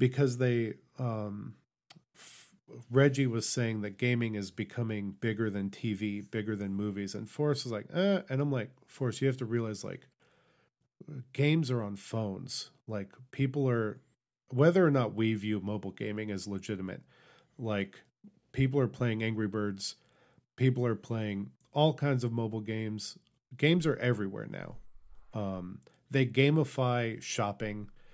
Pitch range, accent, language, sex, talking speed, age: 105-135 Hz, American, English, male, 145 wpm, 40-59